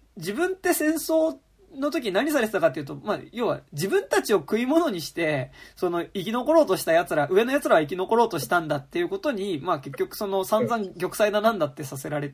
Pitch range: 165-245 Hz